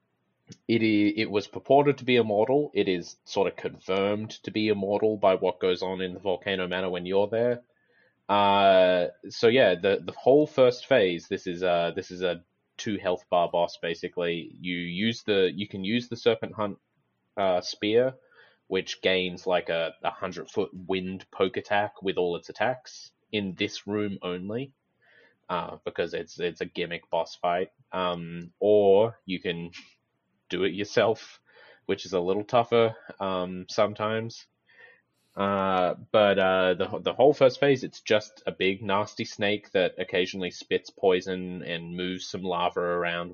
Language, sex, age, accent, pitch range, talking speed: English, male, 20-39, Australian, 90-110 Hz, 160 wpm